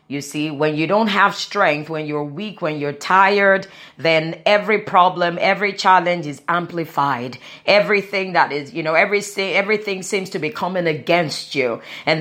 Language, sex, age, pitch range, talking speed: English, female, 30-49, 175-230 Hz, 160 wpm